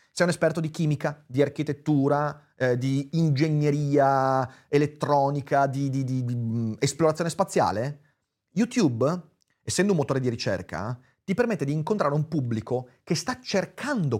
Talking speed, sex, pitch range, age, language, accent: 130 wpm, male, 120-175 Hz, 30-49, Italian, native